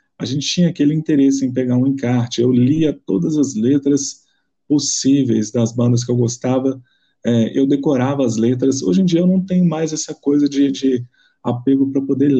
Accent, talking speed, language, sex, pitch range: Brazilian, 190 wpm, Portuguese, male, 115-140 Hz